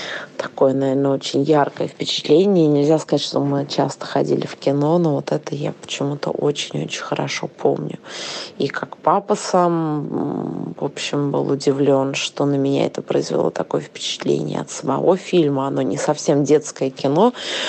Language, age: Russian, 20-39